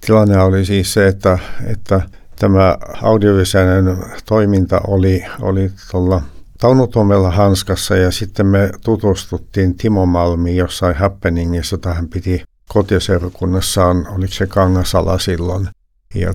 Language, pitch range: Finnish, 90-100 Hz